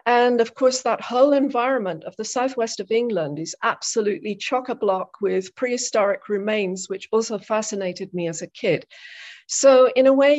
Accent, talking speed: British, 160 wpm